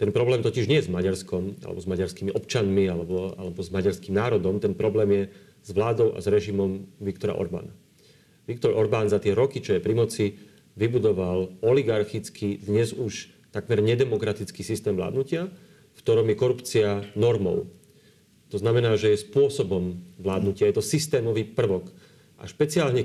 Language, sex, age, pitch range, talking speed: Slovak, male, 40-59, 100-155 Hz, 155 wpm